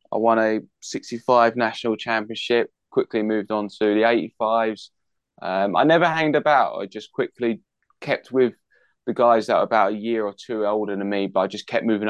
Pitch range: 95-110 Hz